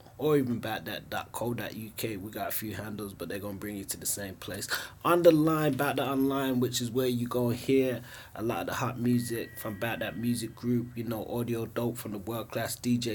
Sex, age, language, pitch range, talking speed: male, 20-39, English, 110-130 Hz, 225 wpm